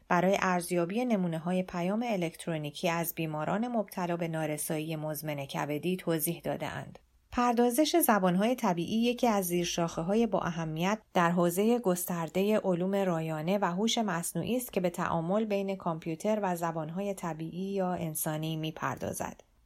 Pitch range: 165-205 Hz